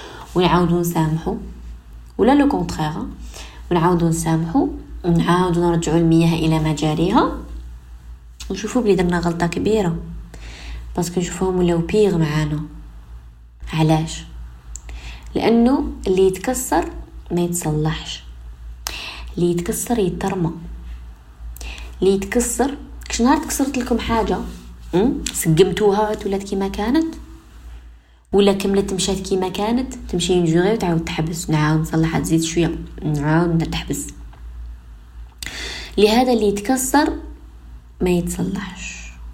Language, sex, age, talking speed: Arabic, female, 20-39, 95 wpm